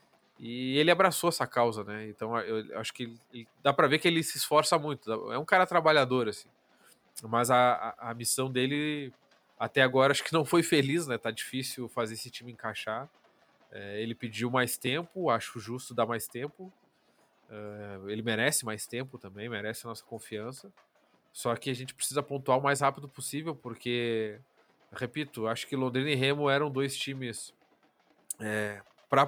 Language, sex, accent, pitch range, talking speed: Portuguese, male, Brazilian, 115-140 Hz, 175 wpm